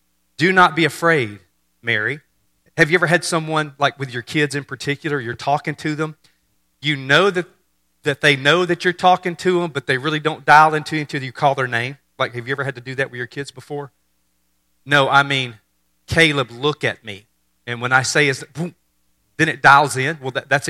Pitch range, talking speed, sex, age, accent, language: 125-165 Hz, 220 wpm, male, 40-59, American, English